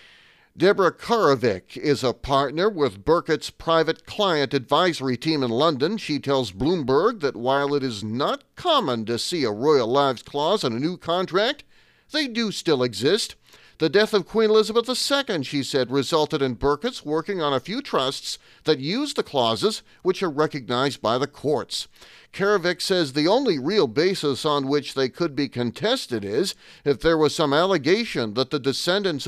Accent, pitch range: American, 135-175 Hz